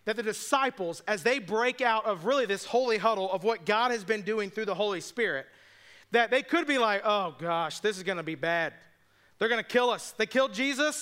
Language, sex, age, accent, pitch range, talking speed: English, male, 40-59, American, 195-240 Hz, 235 wpm